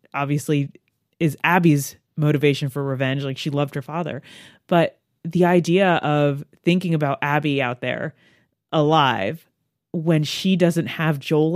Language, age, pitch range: English, 30-49, 145-195 Hz